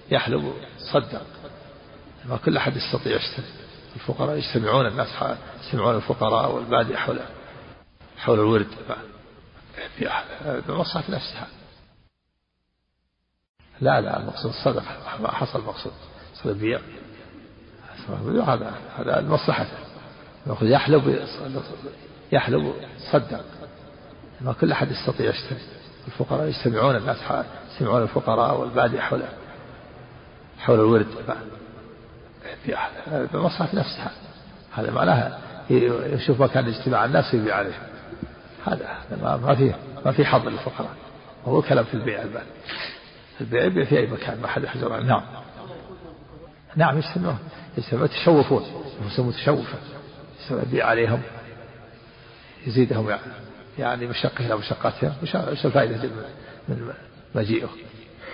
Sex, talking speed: male, 100 wpm